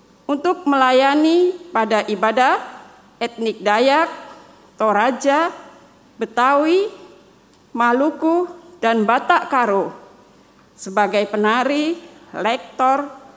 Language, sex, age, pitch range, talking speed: Indonesian, female, 40-59, 215-290 Hz, 65 wpm